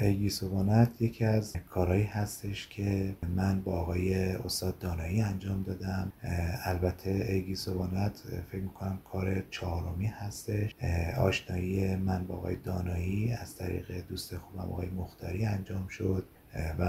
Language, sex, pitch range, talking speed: Persian, male, 90-105 Hz, 125 wpm